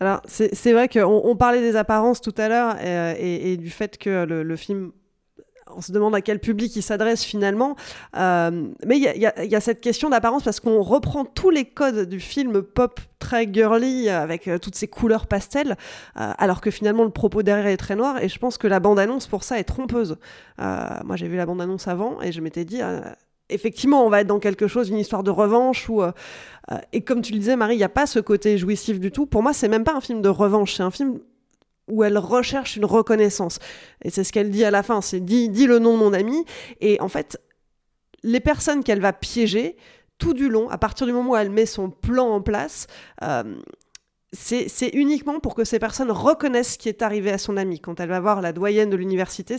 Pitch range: 200-245 Hz